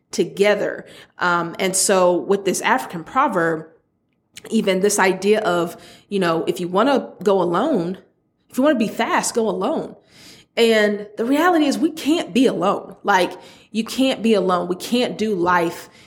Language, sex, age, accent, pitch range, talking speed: English, female, 30-49, American, 185-230 Hz, 170 wpm